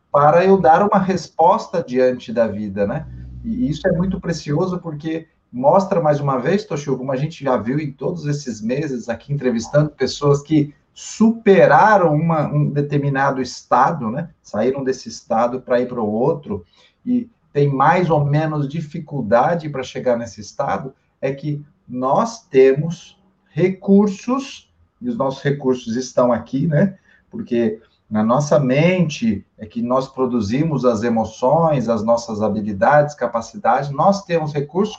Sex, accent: male, Brazilian